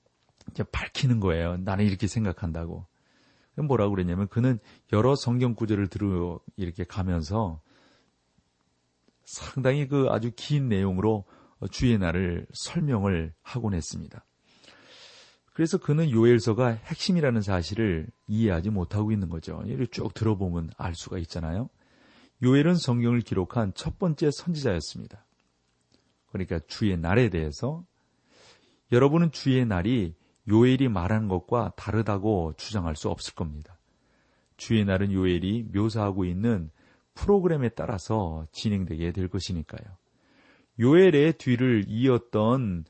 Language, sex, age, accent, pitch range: Korean, male, 40-59, native, 90-120 Hz